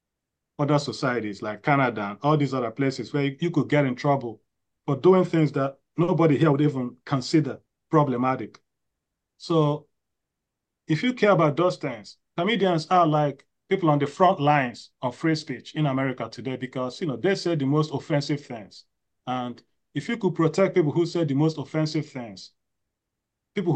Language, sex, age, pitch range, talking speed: English, male, 30-49, 130-165 Hz, 170 wpm